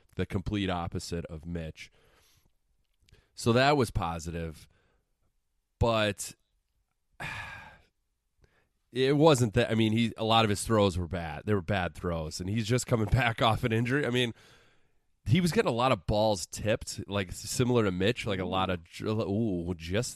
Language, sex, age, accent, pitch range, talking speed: English, male, 30-49, American, 90-115 Hz, 165 wpm